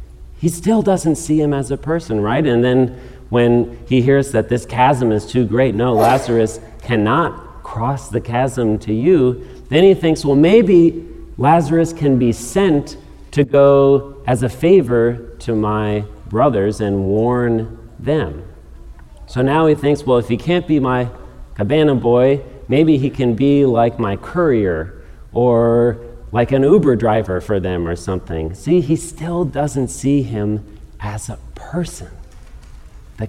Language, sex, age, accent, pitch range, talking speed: English, male, 40-59, American, 95-140 Hz, 155 wpm